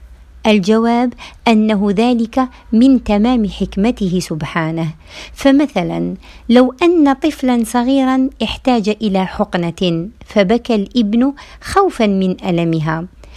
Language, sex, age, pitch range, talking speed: Arabic, female, 50-69, 180-240 Hz, 90 wpm